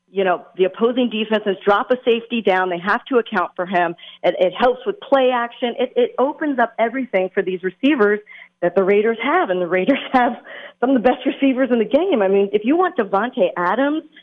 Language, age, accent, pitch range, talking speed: English, 40-59, American, 190-260 Hz, 220 wpm